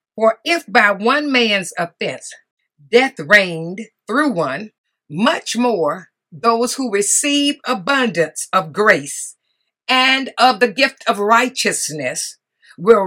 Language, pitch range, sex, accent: English, 205-275 Hz, female, American